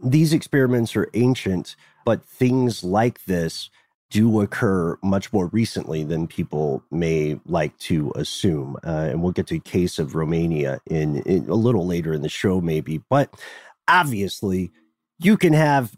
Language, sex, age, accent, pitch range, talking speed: English, male, 30-49, American, 95-130 Hz, 160 wpm